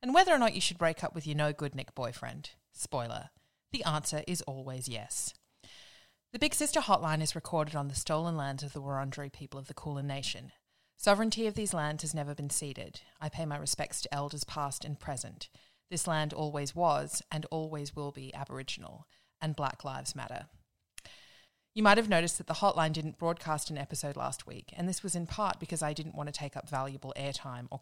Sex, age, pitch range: female, 30-49, 140-165 Hz